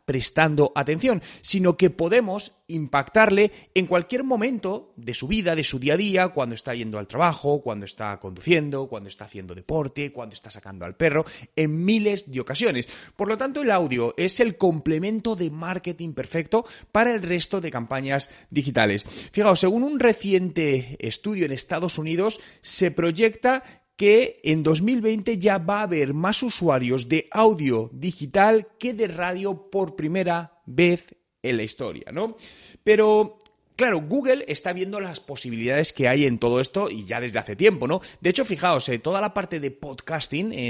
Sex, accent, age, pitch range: male, Spanish, 30-49, 140-200 Hz